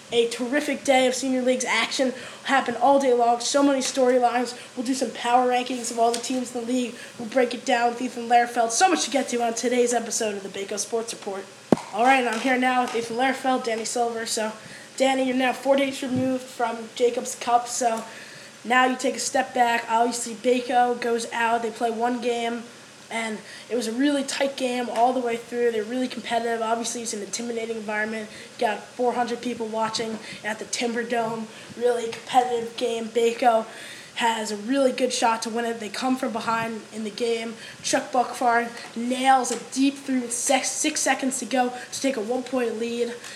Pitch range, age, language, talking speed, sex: 230-255 Hz, 10-29, English, 200 wpm, female